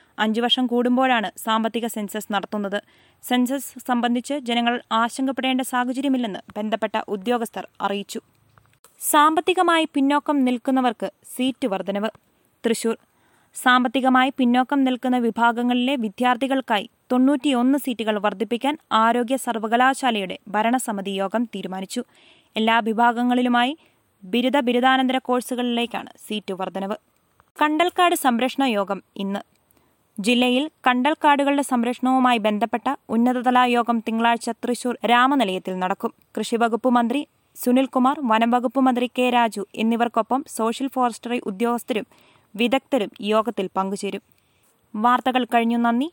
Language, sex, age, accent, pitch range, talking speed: Malayalam, female, 20-39, native, 225-260 Hz, 85 wpm